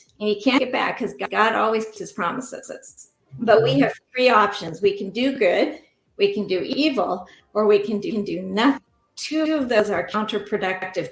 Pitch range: 200-260 Hz